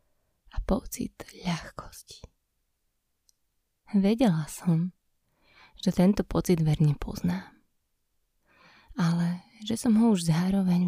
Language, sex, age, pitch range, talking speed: Slovak, female, 20-39, 170-210 Hz, 85 wpm